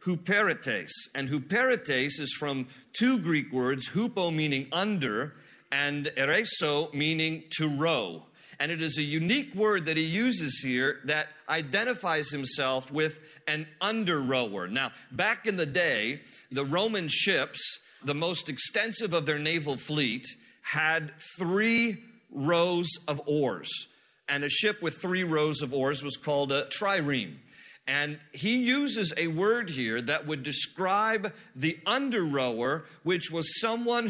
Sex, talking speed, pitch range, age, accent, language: male, 140 wpm, 150-205 Hz, 40-59, American, English